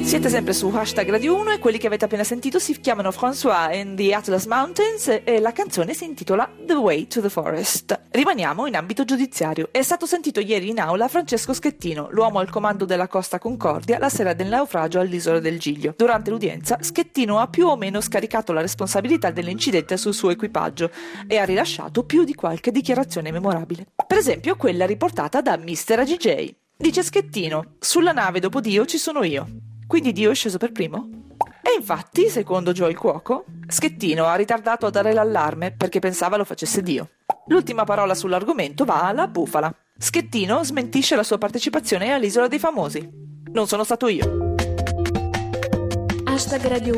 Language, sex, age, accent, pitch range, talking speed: Italian, female, 40-59, native, 180-260 Hz, 170 wpm